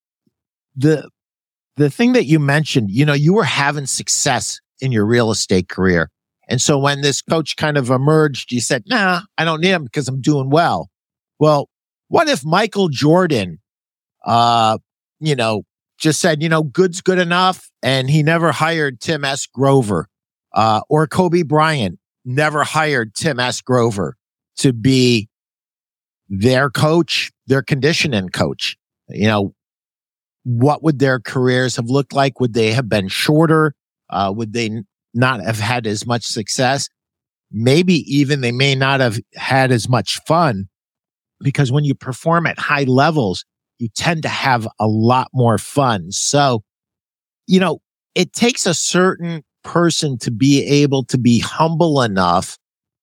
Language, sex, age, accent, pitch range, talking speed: English, male, 50-69, American, 120-155 Hz, 155 wpm